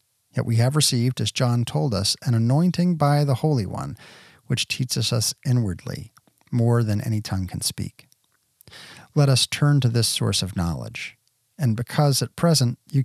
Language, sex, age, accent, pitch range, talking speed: English, male, 40-59, American, 115-145 Hz, 170 wpm